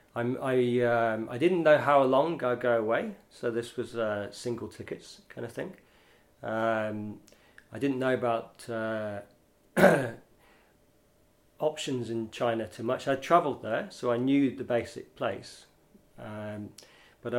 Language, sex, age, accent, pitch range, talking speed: English, male, 40-59, British, 105-120 Hz, 145 wpm